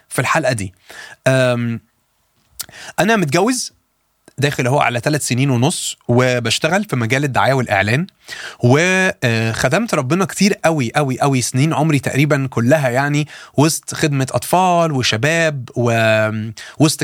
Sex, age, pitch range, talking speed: male, 30-49, 125-160 Hz, 115 wpm